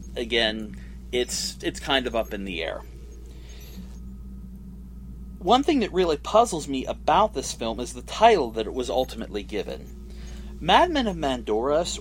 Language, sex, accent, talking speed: English, male, American, 145 wpm